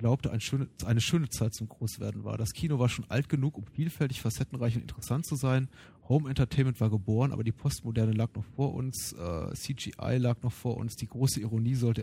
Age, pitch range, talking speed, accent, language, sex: 30-49, 110-135 Hz, 205 wpm, German, German, male